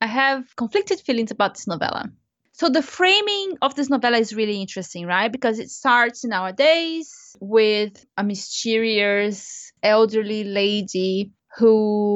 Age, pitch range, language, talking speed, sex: 20-39, 210-250 Hz, English, 145 wpm, female